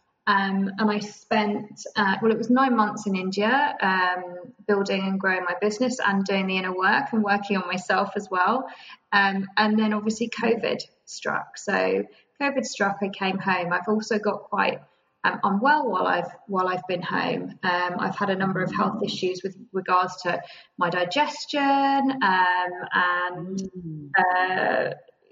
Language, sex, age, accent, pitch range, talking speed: English, female, 20-39, British, 190-225 Hz, 165 wpm